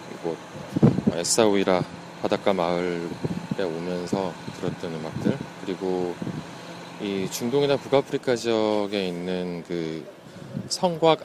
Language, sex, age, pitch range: Korean, male, 20-39, 90-125 Hz